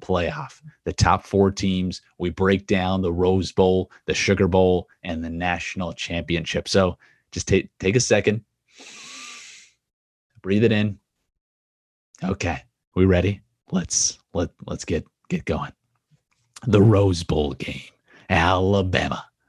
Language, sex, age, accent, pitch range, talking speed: English, male, 30-49, American, 90-105 Hz, 125 wpm